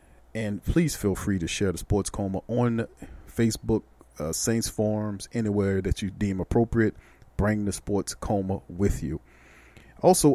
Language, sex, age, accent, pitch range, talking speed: English, male, 40-59, American, 95-110 Hz, 150 wpm